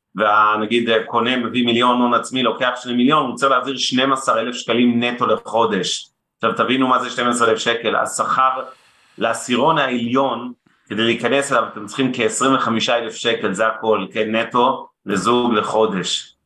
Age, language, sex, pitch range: 30-49, Hebrew, male, 115-135 Hz